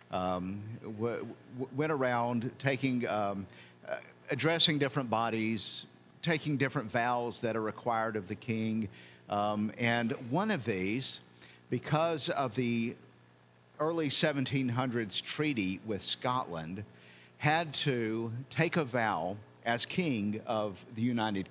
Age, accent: 50-69, American